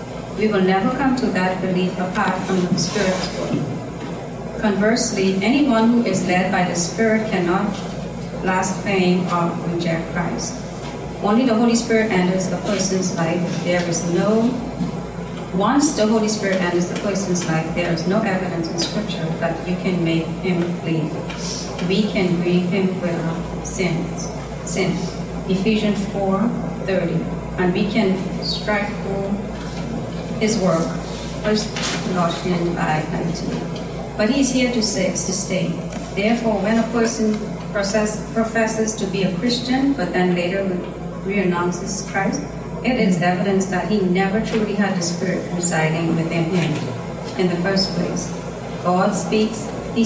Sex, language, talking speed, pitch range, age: female, English, 145 wpm, 175-210 Hz, 30-49